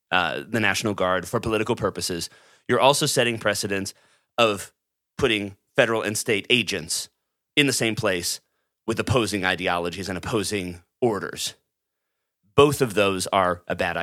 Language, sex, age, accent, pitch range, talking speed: English, male, 30-49, American, 95-125 Hz, 140 wpm